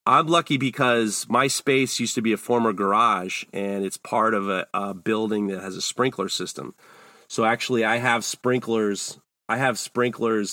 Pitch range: 110-145 Hz